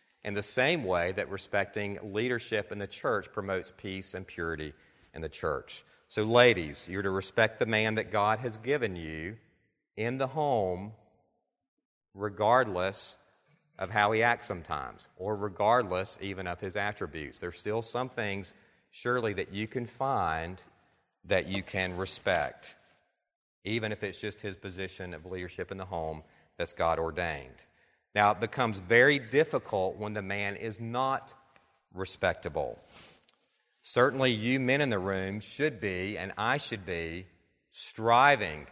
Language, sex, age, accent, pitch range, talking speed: English, male, 40-59, American, 95-120 Hz, 145 wpm